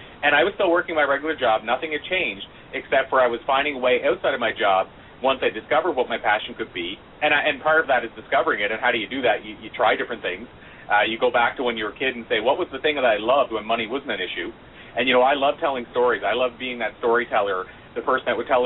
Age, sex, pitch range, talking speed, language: 30-49, male, 120-150 Hz, 290 wpm, English